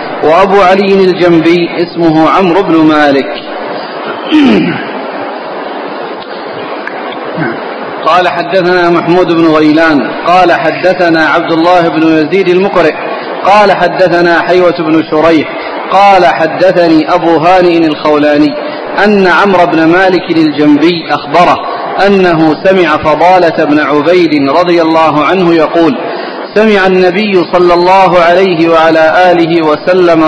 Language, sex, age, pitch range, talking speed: Arabic, male, 40-59, 160-190 Hz, 105 wpm